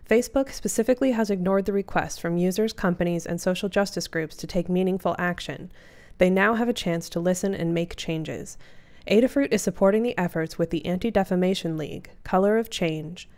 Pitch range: 170-210 Hz